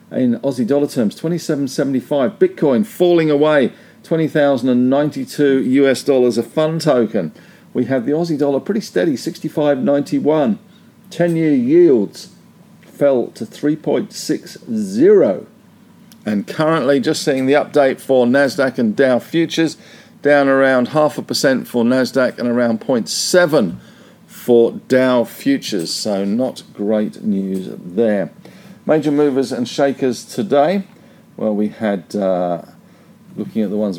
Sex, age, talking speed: male, 50-69, 120 wpm